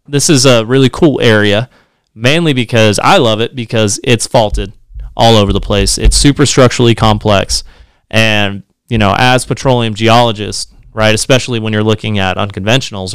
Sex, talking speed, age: male, 160 wpm, 30-49